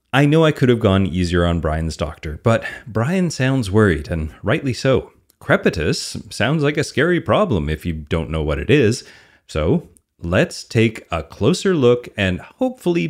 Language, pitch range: English, 85-115 Hz